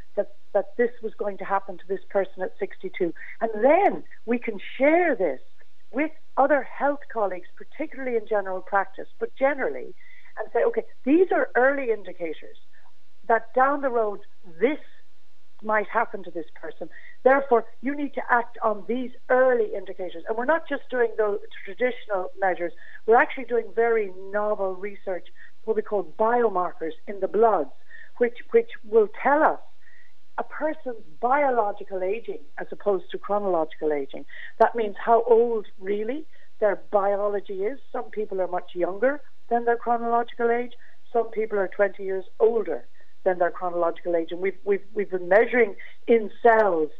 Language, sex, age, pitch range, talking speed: English, female, 60-79, 195-275 Hz, 160 wpm